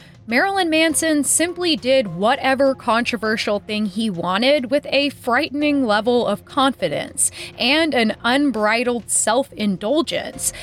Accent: American